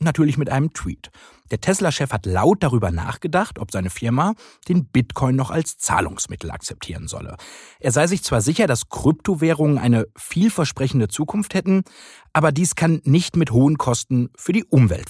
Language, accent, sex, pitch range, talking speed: German, German, male, 120-185 Hz, 165 wpm